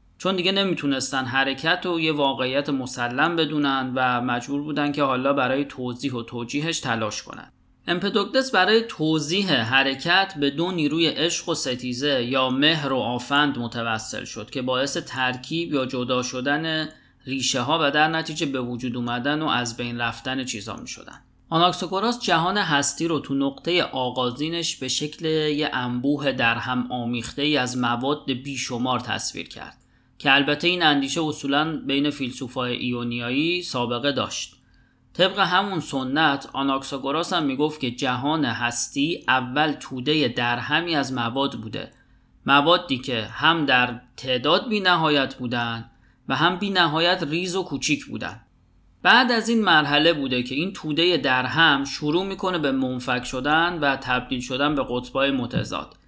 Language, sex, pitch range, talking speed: Persian, male, 125-160 Hz, 145 wpm